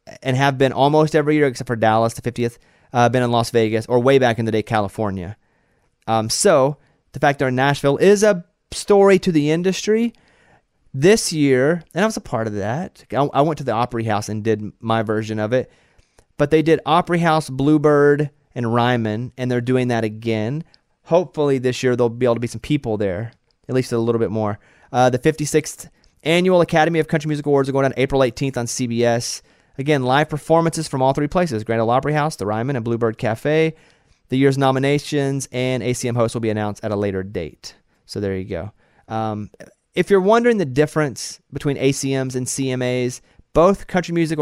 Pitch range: 115-150 Hz